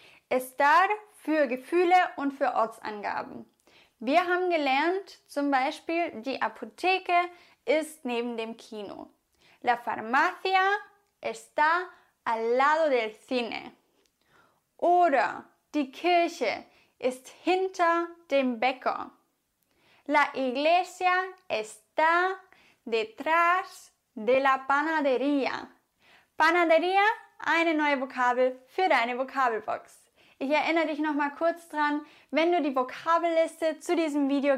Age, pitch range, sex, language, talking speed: 10-29, 255-335 Hz, female, English, 100 wpm